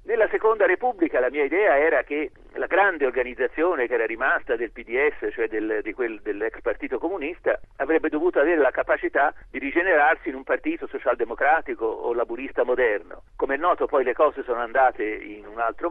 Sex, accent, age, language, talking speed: male, native, 50-69, Italian, 180 wpm